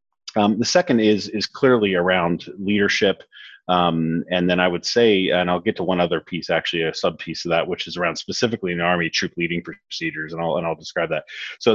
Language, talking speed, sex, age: English, 220 wpm, male, 30-49